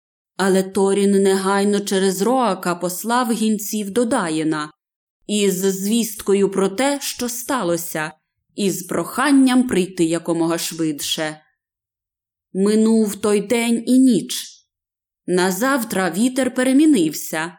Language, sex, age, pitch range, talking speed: Ukrainian, female, 20-39, 175-240 Hz, 100 wpm